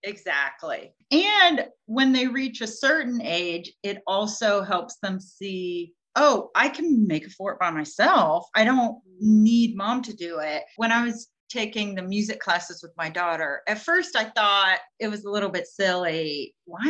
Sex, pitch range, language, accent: female, 185-245 Hz, English, American